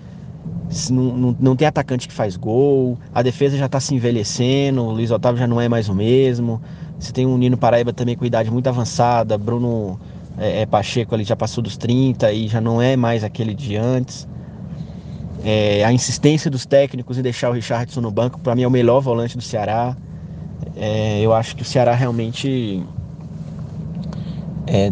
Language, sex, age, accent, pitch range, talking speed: Portuguese, male, 20-39, Brazilian, 115-150 Hz, 190 wpm